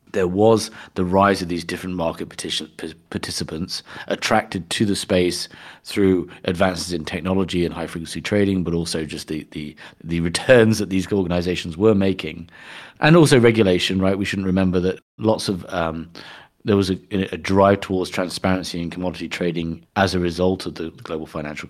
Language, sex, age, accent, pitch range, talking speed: English, male, 40-59, British, 85-105 Hz, 165 wpm